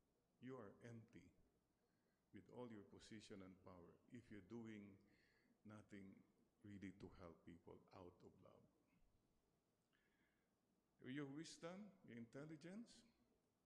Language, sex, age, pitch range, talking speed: English, male, 50-69, 105-140 Hz, 105 wpm